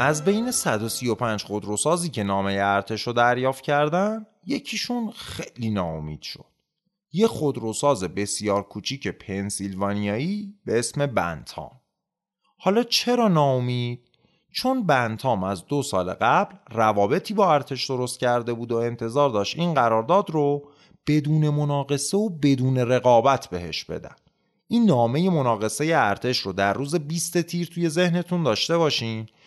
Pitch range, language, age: 105-175 Hz, Persian, 30-49